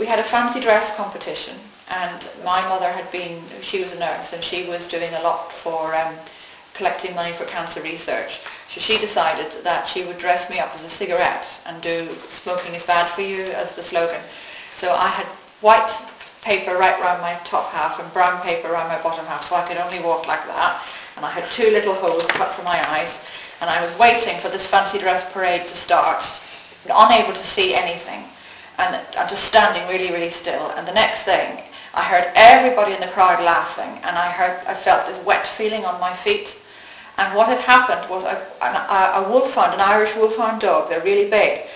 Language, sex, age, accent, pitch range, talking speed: English, female, 40-59, British, 175-220 Hz, 205 wpm